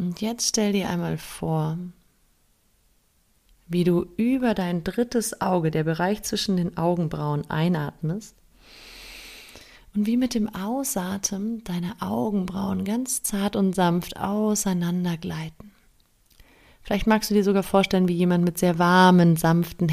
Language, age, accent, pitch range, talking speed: German, 30-49, German, 160-190 Hz, 130 wpm